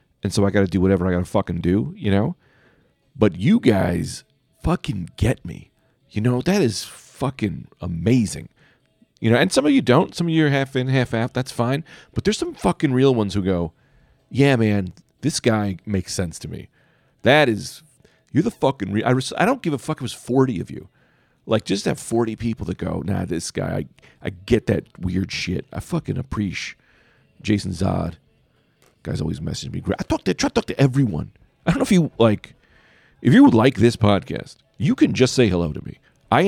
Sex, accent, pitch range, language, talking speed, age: male, American, 95-135 Hz, English, 215 wpm, 40-59